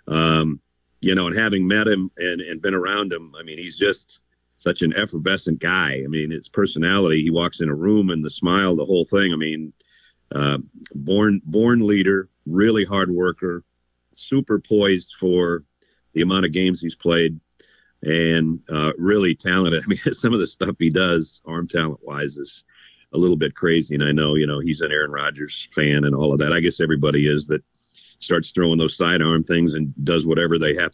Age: 50-69